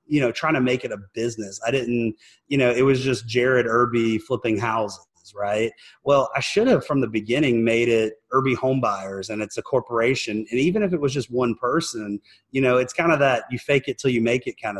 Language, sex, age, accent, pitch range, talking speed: English, male, 30-49, American, 110-130 Hz, 230 wpm